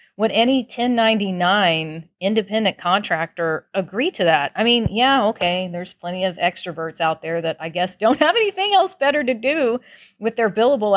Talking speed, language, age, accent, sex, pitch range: 170 wpm, English, 40-59, American, female, 175-235 Hz